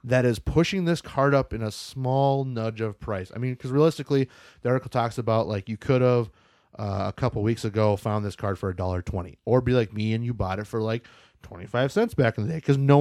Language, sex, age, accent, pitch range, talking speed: English, male, 30-49, American, 110-150 Hz, 255 wpm